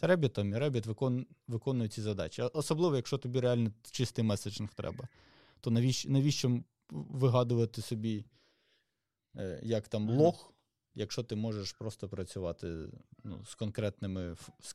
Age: 20-39